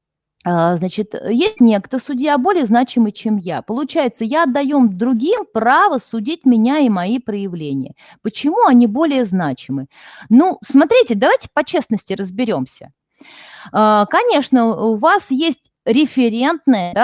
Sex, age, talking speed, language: female, 30-49, 115 wpm, Russian